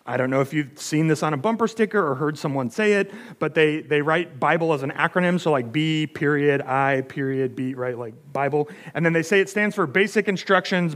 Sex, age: male, 30-49